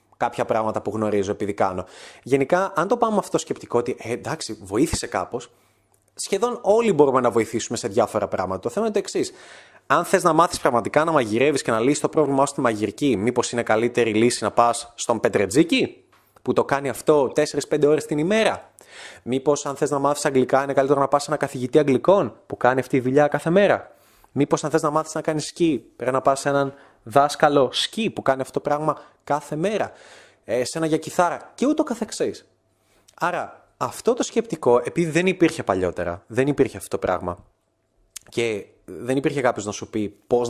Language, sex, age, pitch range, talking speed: Greek, male, 20-39, 115-165 Hz, 190 wpm